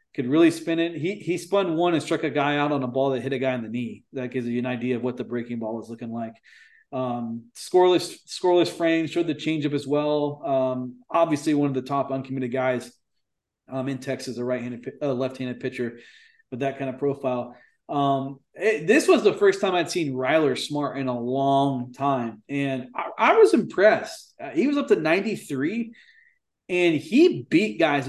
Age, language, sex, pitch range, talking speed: 30-49, English, male, 130-170 Hz, 205 wpm